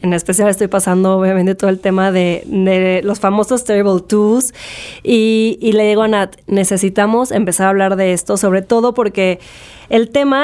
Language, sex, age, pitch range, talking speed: Spanish, female, 20-39, 195-230 Hz, 180 wpm